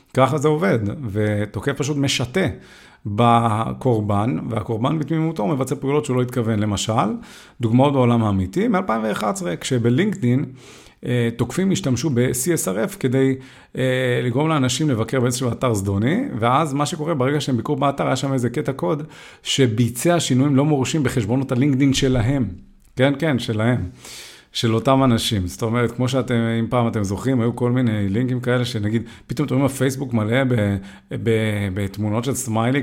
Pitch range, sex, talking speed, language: 115-140 Hz, male, 140 wpm, Hebrew